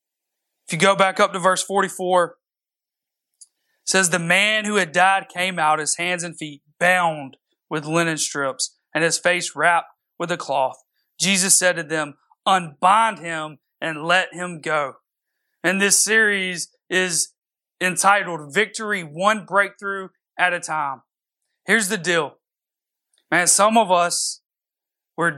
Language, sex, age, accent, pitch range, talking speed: English, male, 30-49, American, 170-210 Hz, 145 wpm